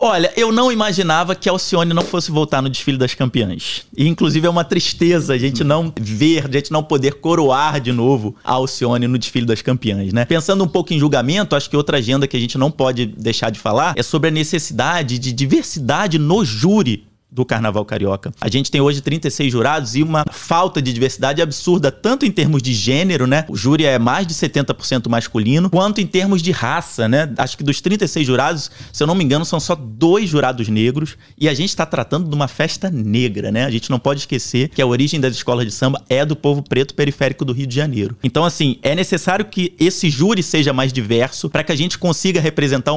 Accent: Brazilian